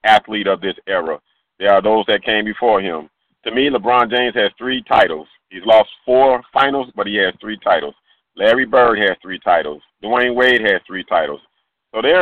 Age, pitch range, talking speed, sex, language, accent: 40-59, 100-125 Hz, 185 wpm, male, English, American